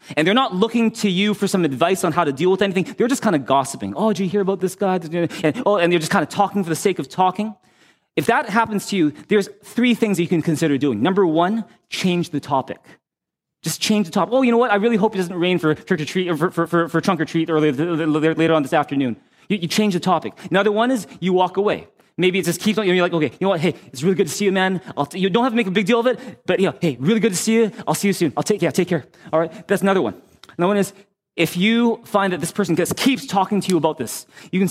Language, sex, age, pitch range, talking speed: English, male, 20-39, 160-205 Hz, 305 wpm